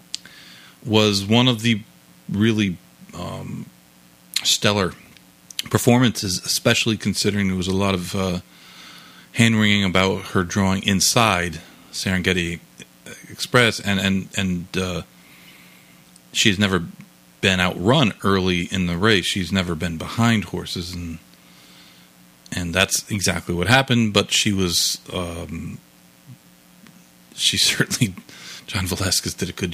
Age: 40-59